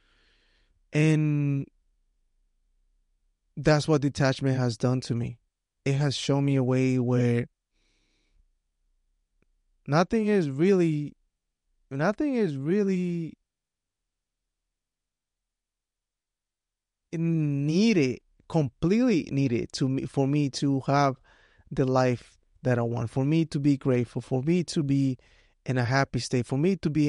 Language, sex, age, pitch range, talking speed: English, male, 30-49, 90-145 Hz, 115 wpm